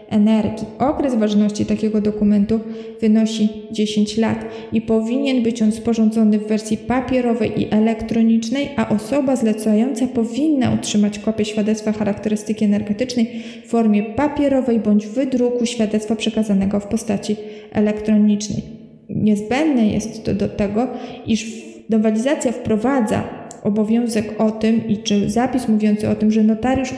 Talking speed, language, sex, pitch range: 125 wpm, Polish, female, 215-240 Hz